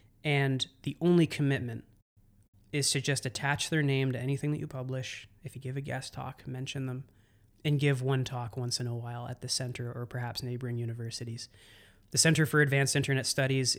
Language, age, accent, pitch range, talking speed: English, 20-39, American, 115-145 Hz, 190 wpm